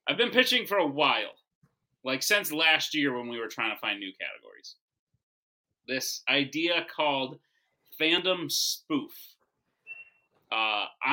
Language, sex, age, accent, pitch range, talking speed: English, male, 30-49, American, 130-165 Hz, 130 wpm